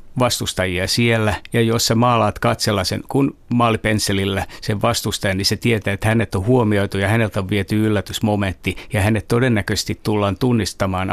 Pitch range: 95-115 Hz